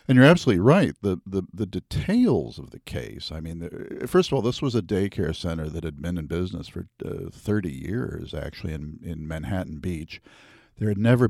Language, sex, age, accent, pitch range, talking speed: English, male, 50-69, American, 85-105 Hz, 200 wpm